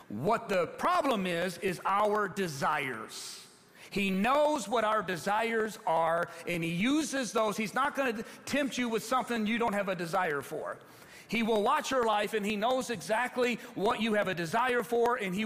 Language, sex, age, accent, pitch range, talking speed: English, male, 40-59, American, 195-250 Hz, 185 wpm